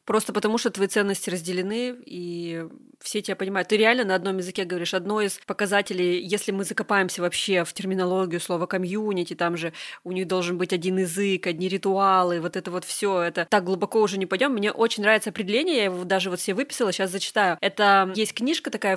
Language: Russian